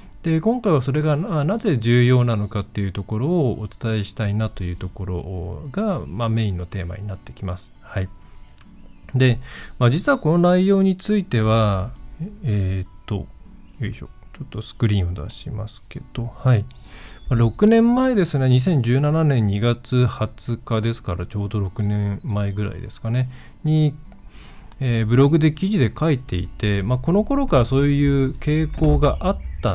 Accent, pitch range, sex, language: native, 100-145 Hz, male, Japanese